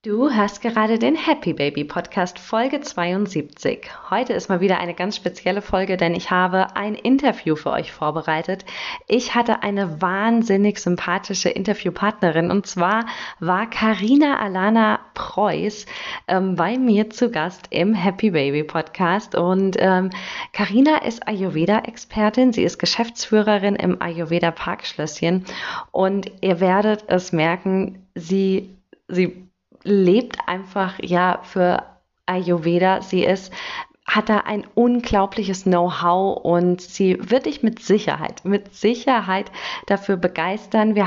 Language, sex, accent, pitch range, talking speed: German, female, German, 185-220 Hz, 125 wpm